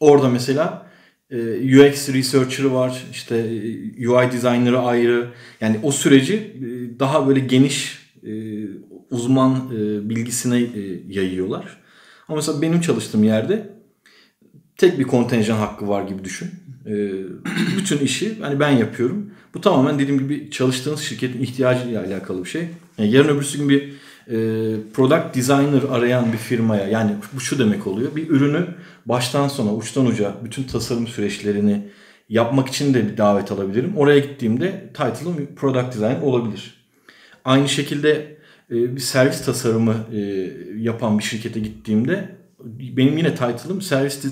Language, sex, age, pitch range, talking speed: Turkish, male, 40-59, 115-145 Hz, 125 wpm